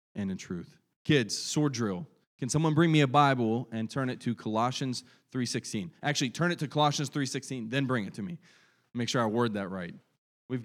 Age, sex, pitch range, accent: 20-39, male, 115-145 Hz, American